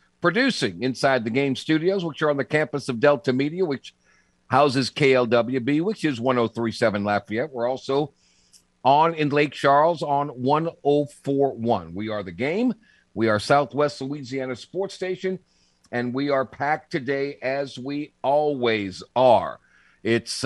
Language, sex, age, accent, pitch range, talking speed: English, male, 50-69, American, 120-165 Hz, 140 wpm